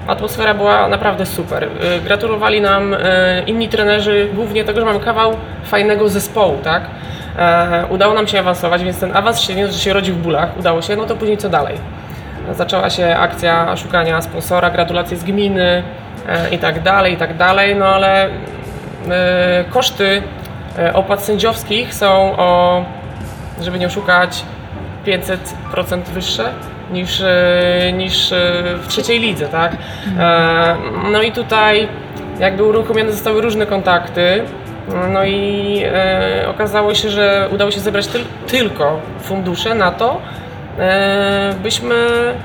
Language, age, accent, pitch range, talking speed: Polish, 20-39, native, 175-205 Hz, 125 wpm